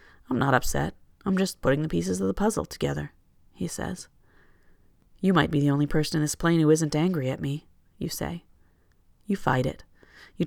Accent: American